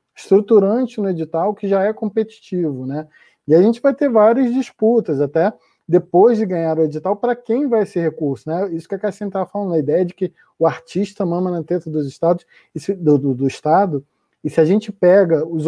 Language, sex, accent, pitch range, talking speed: Portuguese, male, Brazilian, 160-210 Hz, 205 wpm